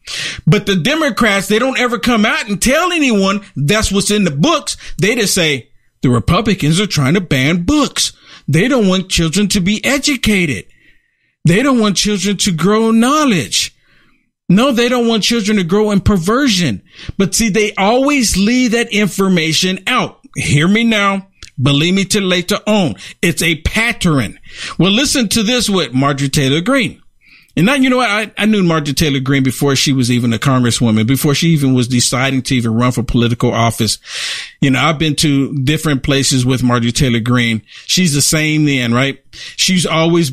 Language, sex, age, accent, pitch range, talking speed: English, male, 50-69, American, 140-205 Hz, 180 wpm